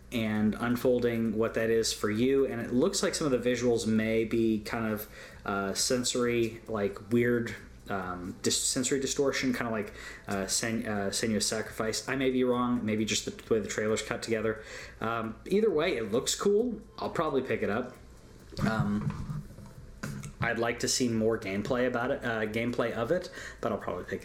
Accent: American